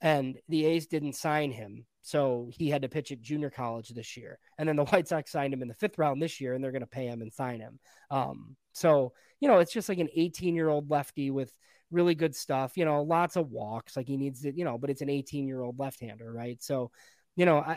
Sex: male